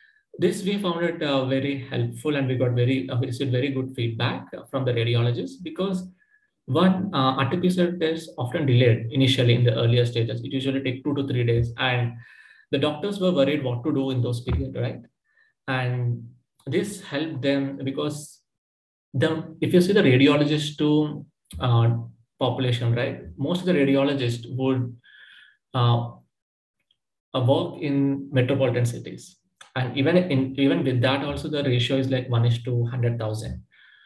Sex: male